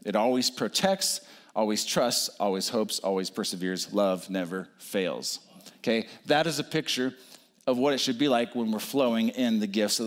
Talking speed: 180 wpm